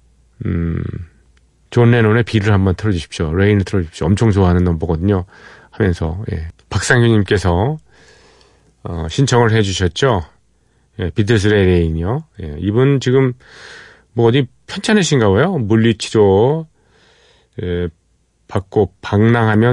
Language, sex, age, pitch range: Korean, male, 40-59, 90-115 Hz